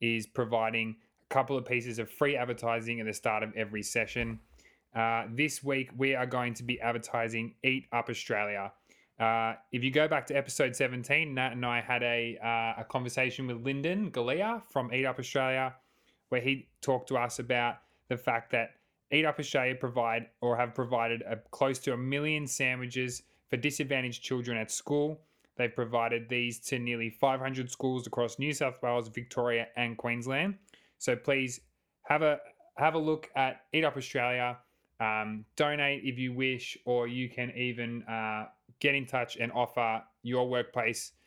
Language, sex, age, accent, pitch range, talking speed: English, male, 20-39, Australian, 115-135 Hz, 170 wpm